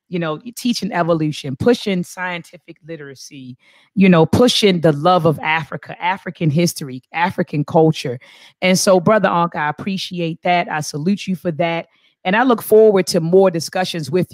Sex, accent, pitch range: female, American, 160-205 Hz